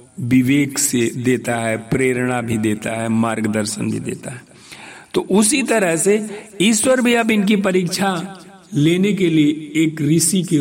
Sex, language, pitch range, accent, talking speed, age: male, Hindi, 130-200 Hz, native, 155 wpm, 50-69